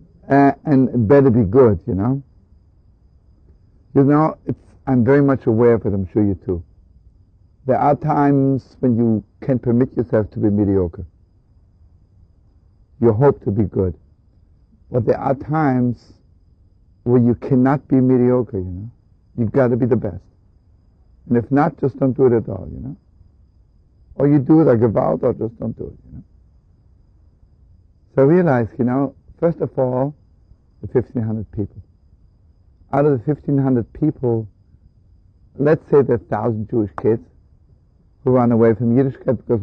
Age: 60-79